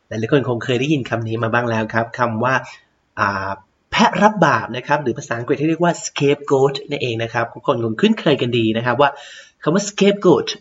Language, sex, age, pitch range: Thai, male, 30-49, 125-175 Hz